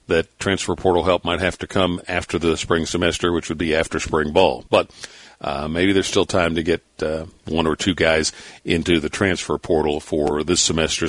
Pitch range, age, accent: 85-110 Hz, 50-69, American